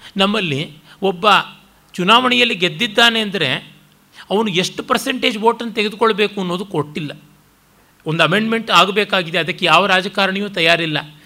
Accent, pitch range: native, 165-225 Hz